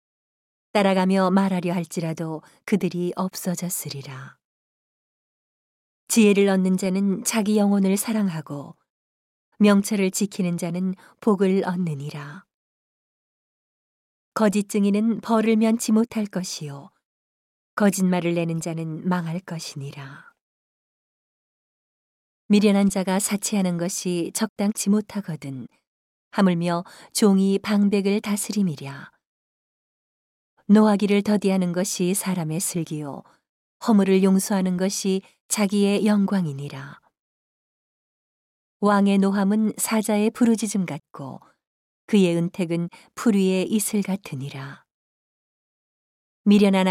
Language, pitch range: Korean, 175-210 Hz